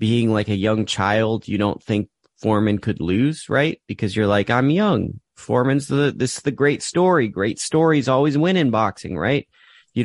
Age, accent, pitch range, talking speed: 30-49, American, 105-135 Hz, 190 wpm